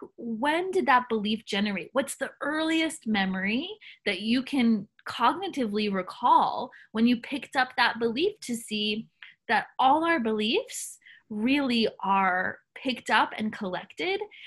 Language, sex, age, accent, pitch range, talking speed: English, female, 20-39, American, 210-270 Hz, 135 wpm